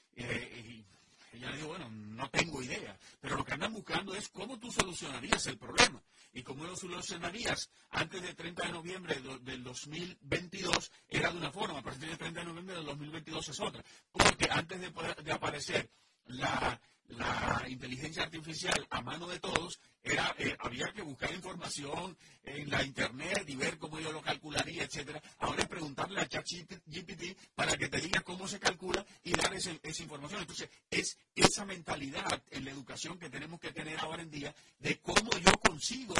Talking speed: 185 wpm